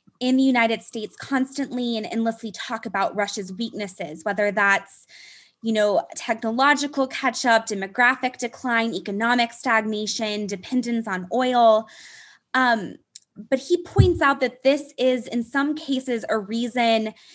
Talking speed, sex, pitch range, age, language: 130 wpm, female, 215-265 Hz, 20-39, English